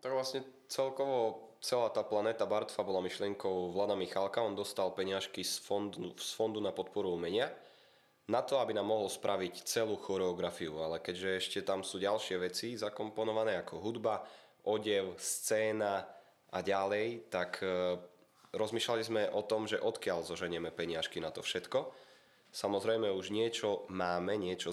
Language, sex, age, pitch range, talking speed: Slovak, male, 20-39, 90-110 Hz, 145 wpm